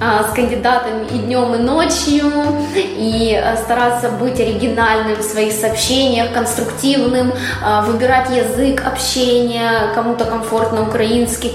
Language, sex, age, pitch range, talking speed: Russian, female, 20-39, 220-260 Hz, 105 wpm